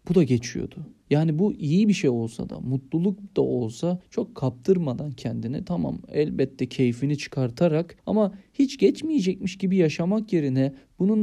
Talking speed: 145 wpm